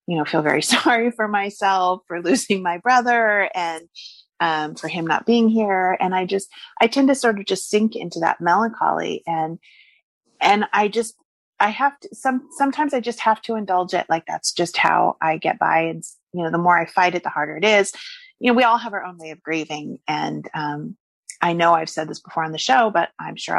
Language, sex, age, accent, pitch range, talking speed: English, female, 30-49, American, 165-225 Hz, 225 wpm